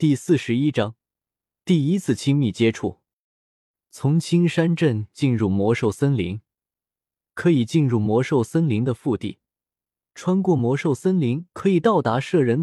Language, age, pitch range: Chinese, 20-39, 105-155 Hz